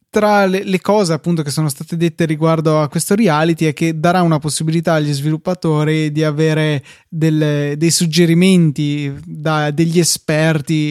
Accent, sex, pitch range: native, male, 150-170 Hz